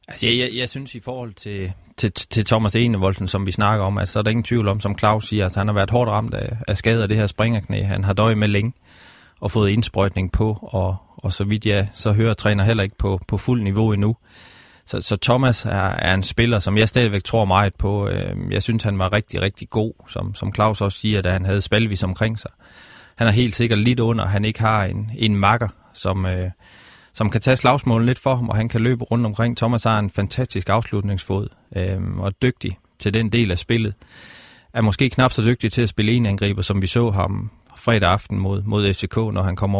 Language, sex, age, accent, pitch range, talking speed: Danish, male, 20-39, native, 95-115 Hz, 235 wpm